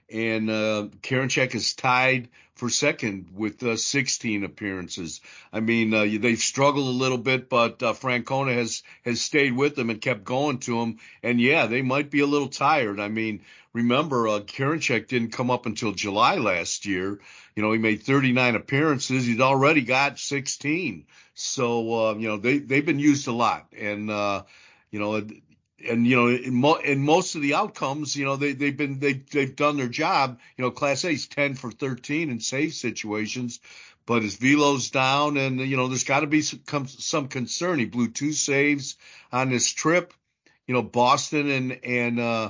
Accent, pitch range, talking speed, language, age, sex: American, 115-140 Hz, 190 wpm, English, 50-69, male